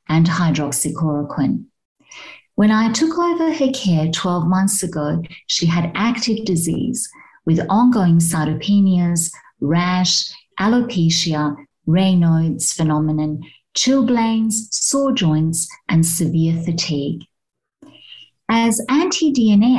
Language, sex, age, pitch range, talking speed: English, female, 50-69, 155-225 Hz, 95 wpm